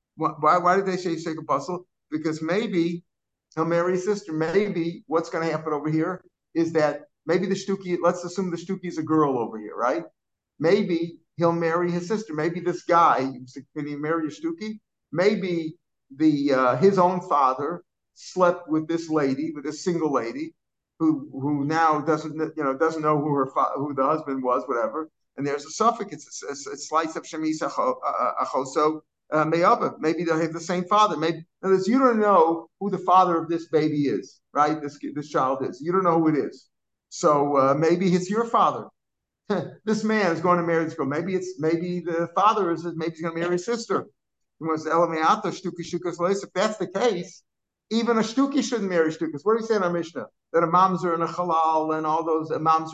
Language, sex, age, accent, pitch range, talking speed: English, male, 50-69, American, 155-180 Hz, 195 wpm